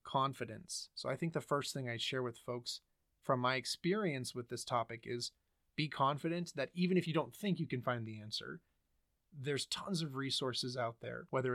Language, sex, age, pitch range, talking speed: English, male, 30-49, 115-135 Hz, 195 wpm